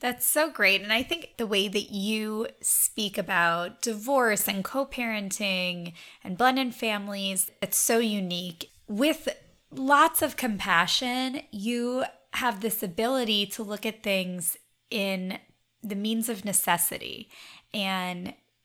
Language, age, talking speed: English, 20-39, 125 wpm